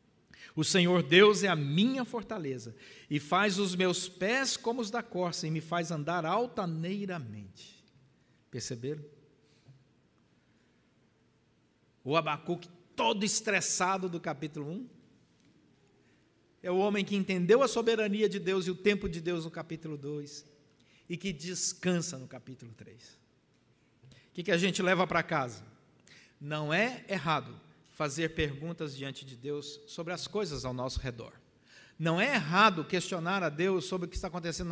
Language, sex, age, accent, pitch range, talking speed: Portuguese, male, 60-79, Brazilian, 150-215 Hz, 145 wpm